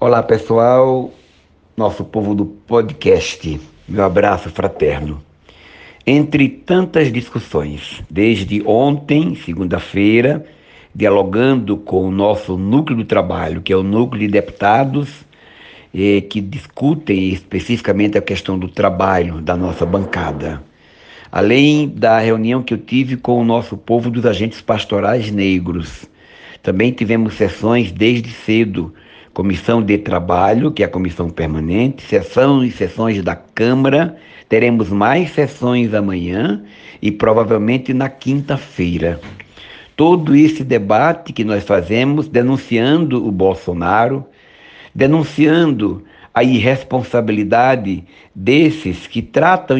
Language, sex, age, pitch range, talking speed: Portuguese, male, 60-79, 95-130 Hz, 110 wpm